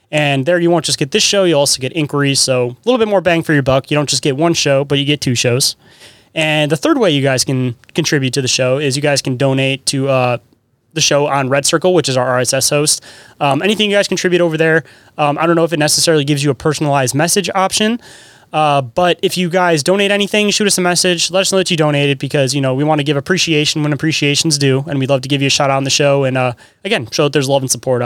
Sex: male